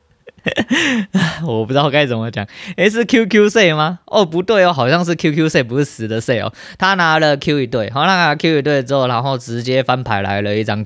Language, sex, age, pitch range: Chinese, male, 20-39, 105-140 Hz